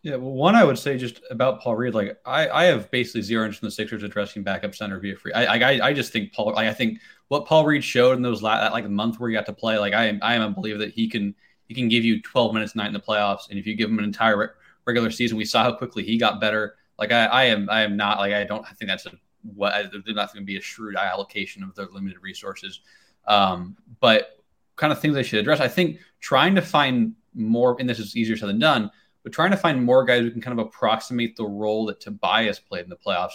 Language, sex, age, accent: English, male, 20-39, American